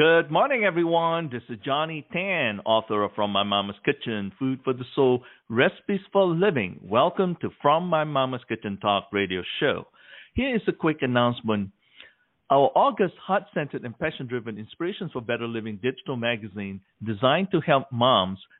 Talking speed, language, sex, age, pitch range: 160 wpm, English, male, 50-69, 105-150 Hz